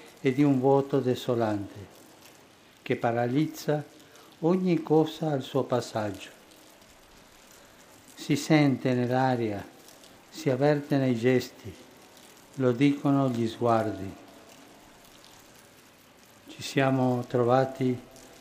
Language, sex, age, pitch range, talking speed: Italian, male, 60-79, 130-160 Hz, 85 wpm